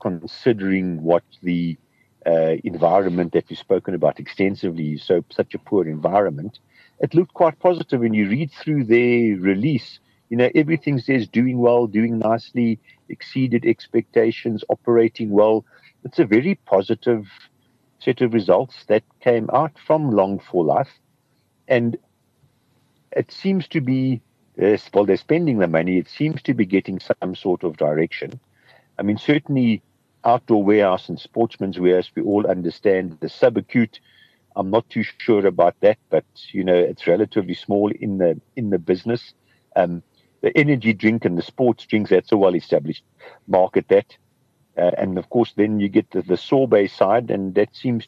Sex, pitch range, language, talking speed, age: male, 95-125 Hz, English, 160 wpm, 50-69